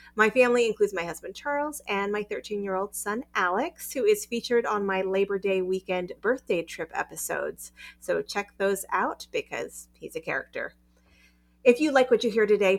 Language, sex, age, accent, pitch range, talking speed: English, female, 30-49, American, 175-240 Hz, 175 wpm